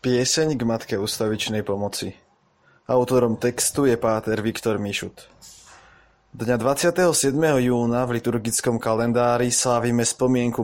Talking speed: 105 wpm